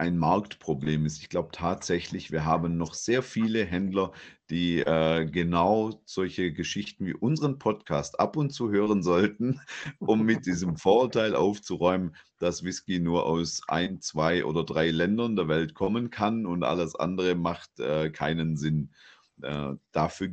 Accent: German